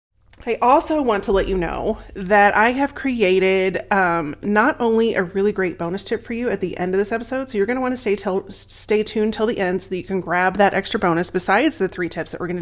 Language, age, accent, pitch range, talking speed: English, 30-49, American, 185-230 Hz, 260 wpm